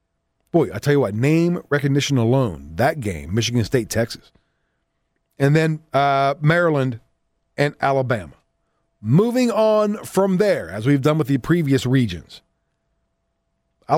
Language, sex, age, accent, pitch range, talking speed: English, male, 40-59, American, 105-170 Hz, 130 wpm